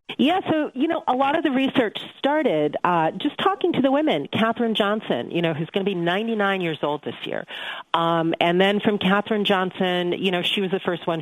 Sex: female